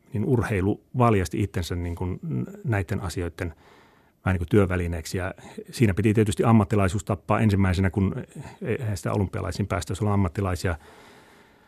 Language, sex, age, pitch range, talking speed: Finnish, male, 30-49, 95-115 Hz, 125 wpm